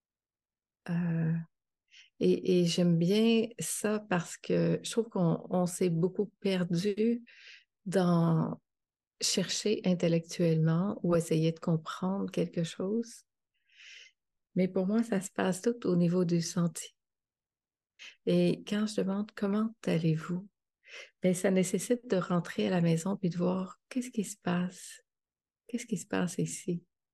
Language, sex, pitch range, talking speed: French, female, 170-215 Hz, 135 wpm